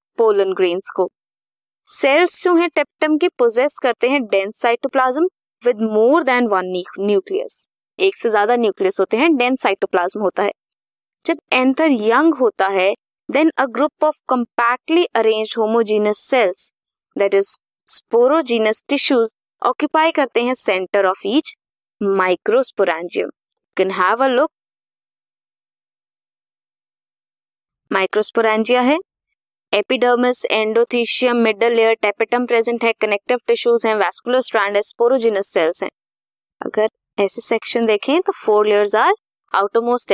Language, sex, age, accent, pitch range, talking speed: Hindi, female, 20-39, native, 205-290 Hz, 70 wpm